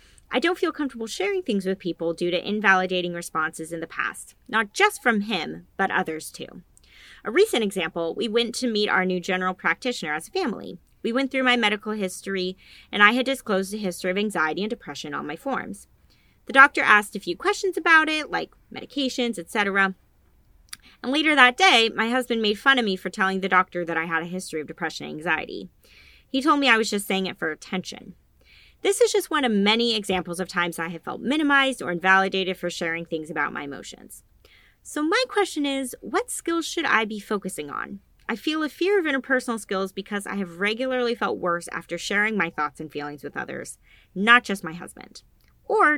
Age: 20-39